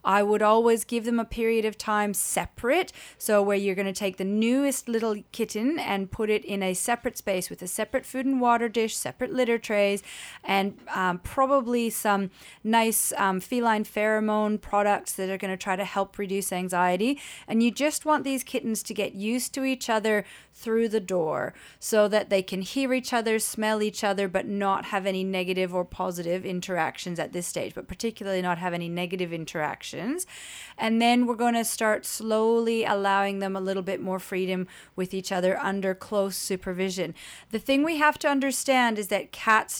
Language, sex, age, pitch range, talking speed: English, female, 30-49, 195-235 Hz, 190 wpm